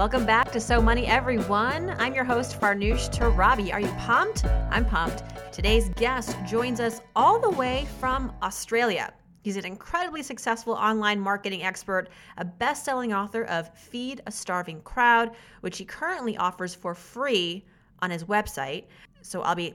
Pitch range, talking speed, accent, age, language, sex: 185-240 Hz, 160 wpm, American, 30-49, English, female